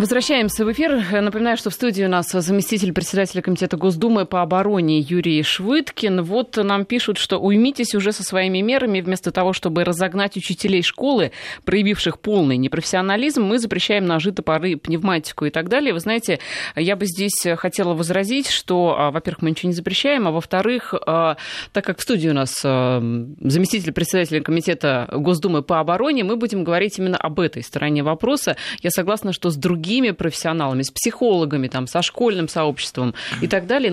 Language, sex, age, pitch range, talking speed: Russian, female, 20-39, 165-210 Hz, 165 wpm